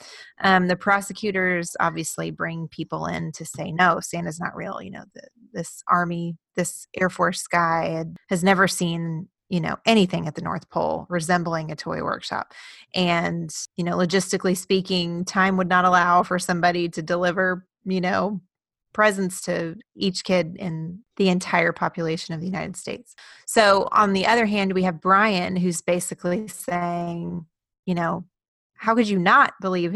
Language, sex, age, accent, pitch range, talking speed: English, female, 30-49, American, 175-200 Hz, 160 wpm